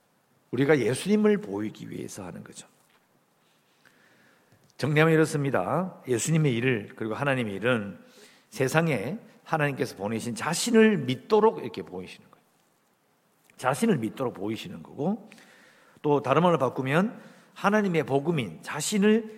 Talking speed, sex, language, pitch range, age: 100 wpm, male, English, 125-180 Hz, 50-69